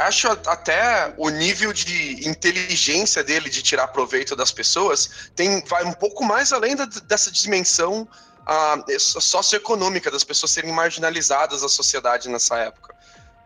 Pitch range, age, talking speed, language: 160-215 Hz, 20-39, 130 wpm, Portuguese